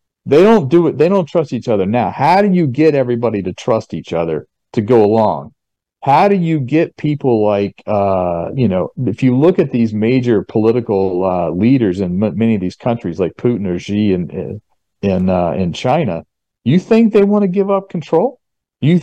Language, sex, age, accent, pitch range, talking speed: English, male, 50-69, American, 105-150 Hz, 200 wpm